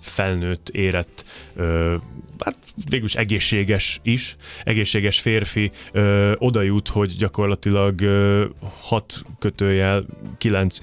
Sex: male